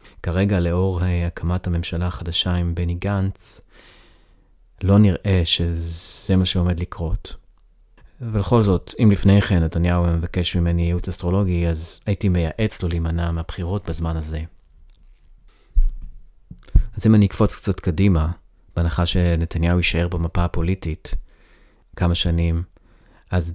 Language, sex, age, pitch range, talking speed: Hebrew, male, 30-49, 85-95 Hz, 120 wpm